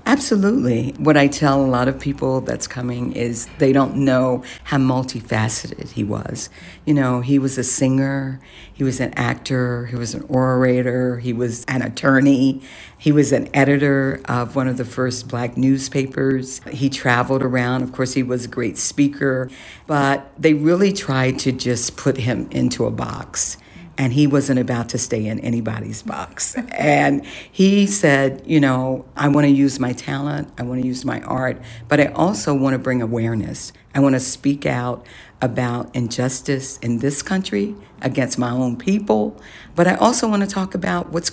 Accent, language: American, English